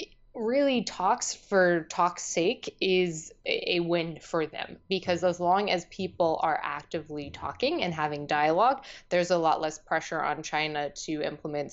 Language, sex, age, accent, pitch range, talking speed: English, female, 20-39, American, 160-185 Hz, 155 wpm